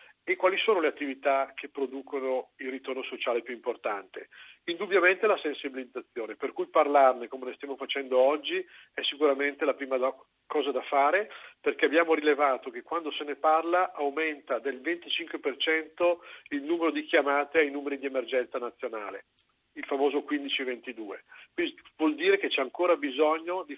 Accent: native